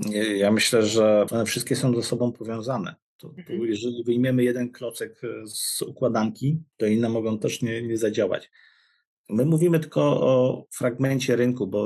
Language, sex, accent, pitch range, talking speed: Polish, male, native, 110-125 Hz, 145 wpm